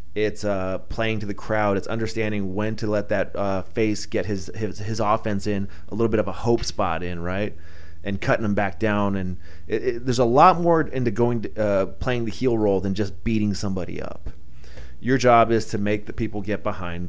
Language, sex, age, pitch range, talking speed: English, male, 30-49, 85-115 Hz, 220 wpm